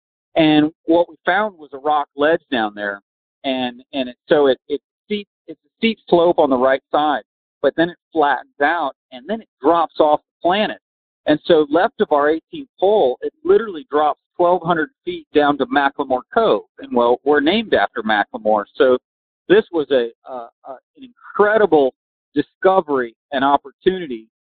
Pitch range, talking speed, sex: 130-180 Hz, 170 wpm, male